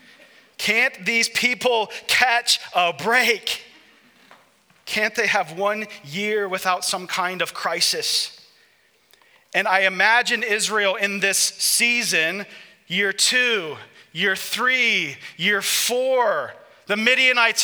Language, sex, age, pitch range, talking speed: English, male, 30-49, 200-250 Hz, 105 wpm